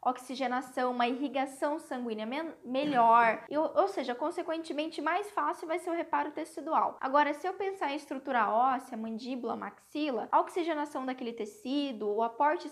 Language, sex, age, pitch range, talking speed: Portuguese, female, 10-29, 250-335 Hz, 150 wpm